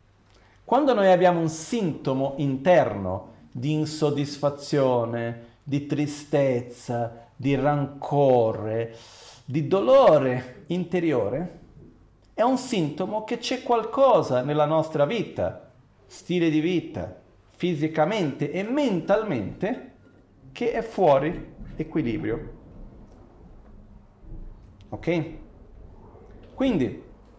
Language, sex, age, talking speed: Italian, male, 40-59, 80 wpm